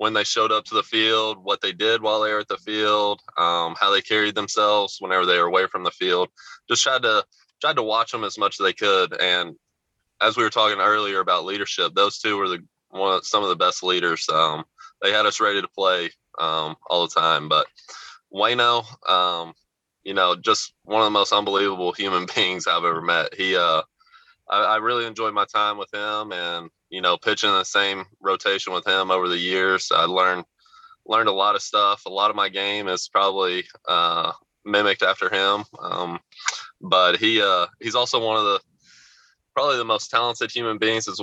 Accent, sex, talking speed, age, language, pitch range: American, male, 205 wpm, 20-39, English, 95-120 Hz